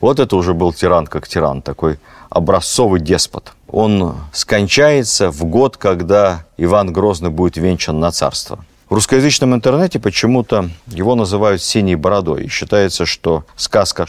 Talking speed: 140 wpm